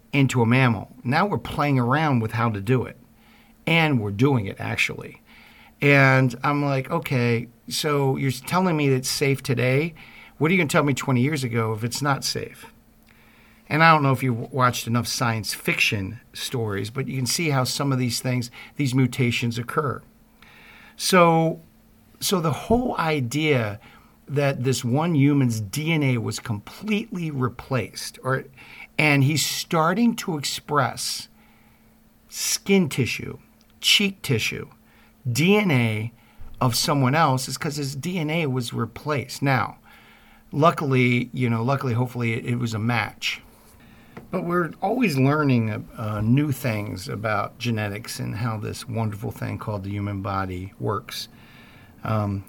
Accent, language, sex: American, English, male